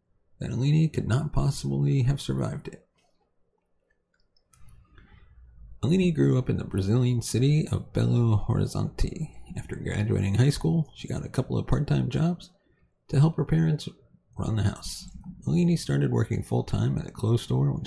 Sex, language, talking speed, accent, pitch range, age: male, English, 150 wpm, American, 110-160 Hz, 30-49